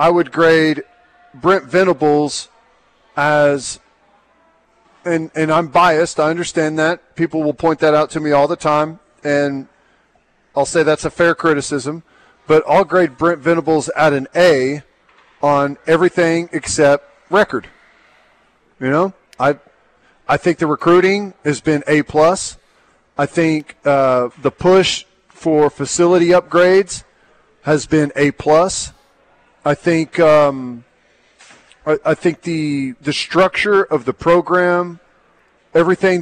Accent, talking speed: American, 130 wpm